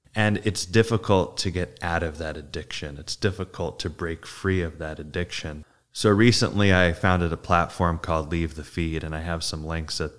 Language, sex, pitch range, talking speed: English, male, 80-95 Hz, 195 wpm